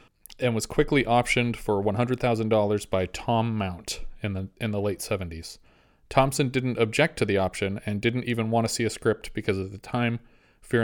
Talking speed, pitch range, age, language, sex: 190 wpm, 105-120 Hz, 30-49, English, male